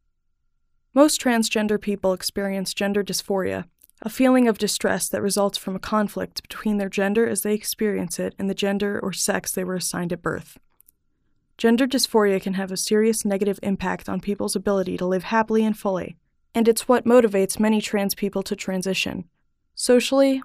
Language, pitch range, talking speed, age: English, 195-230 Hz, 170 wpm, 20-39